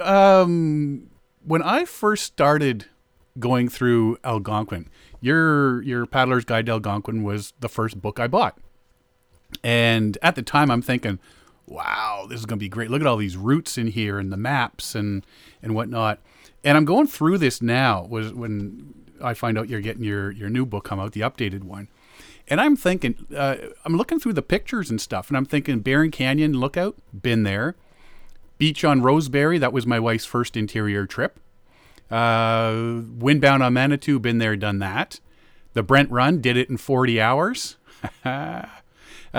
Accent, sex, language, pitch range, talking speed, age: American, male, English, 110-140 Hz, 170 wpm, 40-59